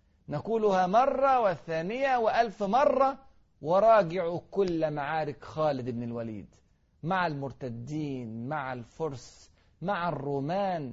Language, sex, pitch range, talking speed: Arabic, male, 130-200 Hz, 95 wpm